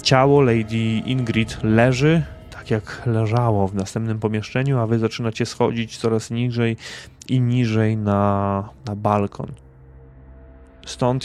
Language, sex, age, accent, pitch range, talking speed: Polish, male, 20-39, native, 100-120 Hz, 115 wpm